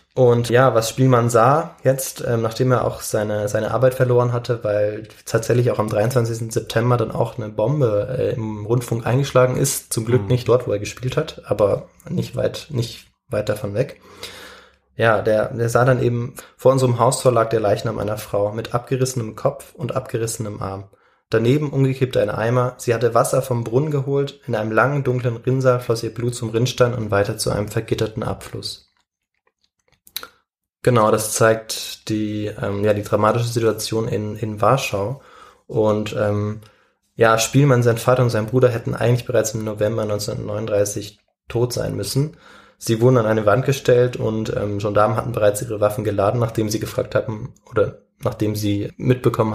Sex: male